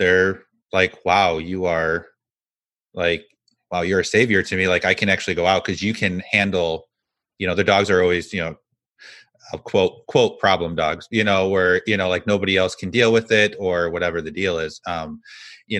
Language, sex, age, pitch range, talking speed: English, male, 30-49, 90-115 Hz, 200 wpm